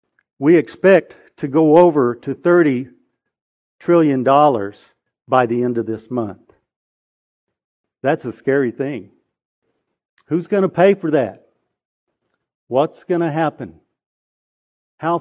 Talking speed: 115 wpm